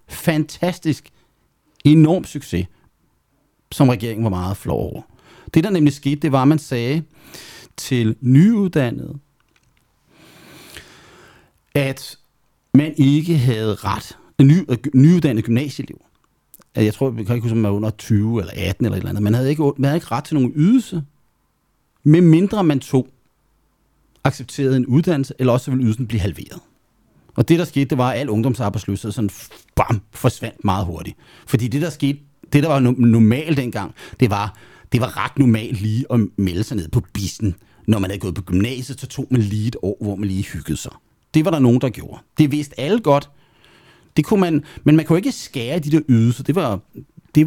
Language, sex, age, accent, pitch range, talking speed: Danish, male, 40-59, native, 110-150 Hz, 180 wpm